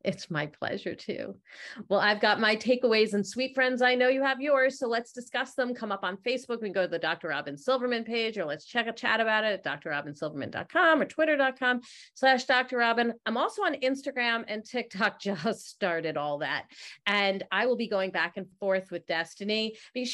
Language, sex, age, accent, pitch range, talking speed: English, female, 40-59, American, 190-260 Hz, 200 wpm